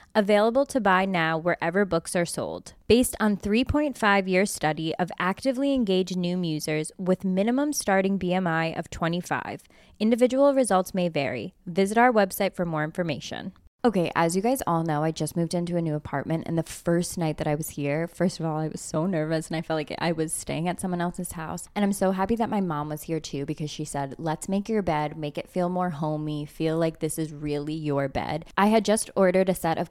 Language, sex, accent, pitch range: English, female, American, 155-190 Hz